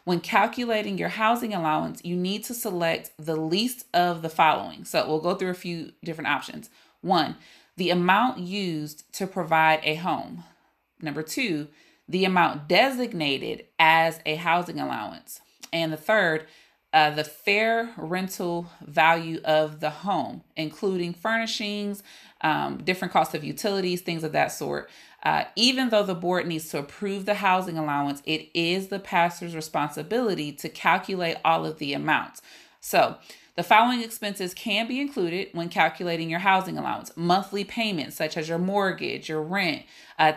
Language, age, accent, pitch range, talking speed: English, 30-49, American, 160-215 Hz, 155 wpm